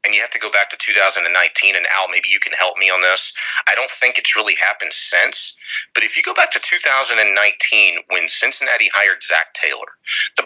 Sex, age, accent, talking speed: male, 30-49, American, 210 wpm